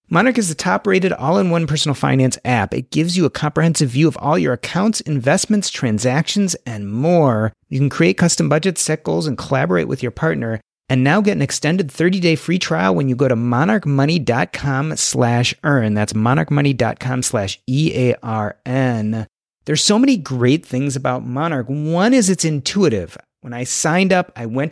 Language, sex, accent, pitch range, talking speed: English, male, American, 125-170 Hz, 165 wpm